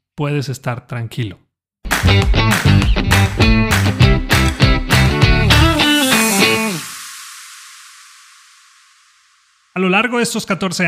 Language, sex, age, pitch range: Spanish, male, 30-49, 130-165 Hz